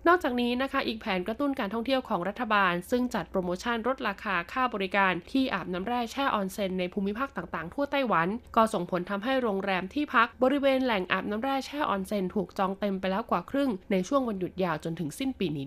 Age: 20-39